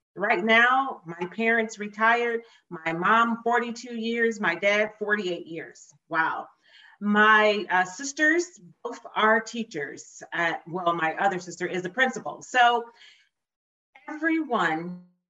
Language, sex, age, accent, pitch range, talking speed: English, female, 40-59, American, 165-220 Hz, 120 wpm